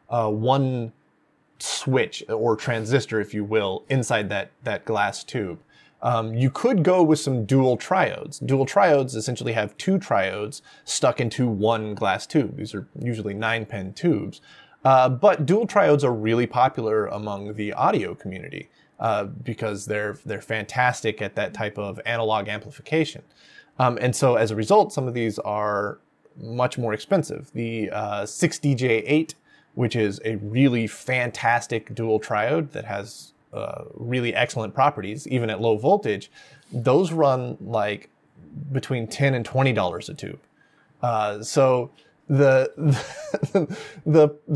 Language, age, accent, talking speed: English, 20-39, American, 145 wpm